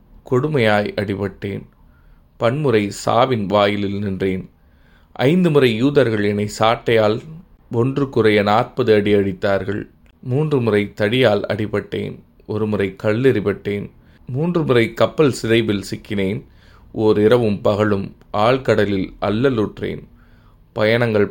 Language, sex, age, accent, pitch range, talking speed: Tamil, male, 20-39, native, 100-115 Hz, 95 wpm